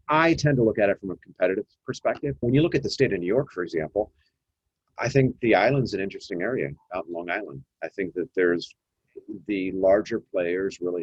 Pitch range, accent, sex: 80-120 Hz, American, male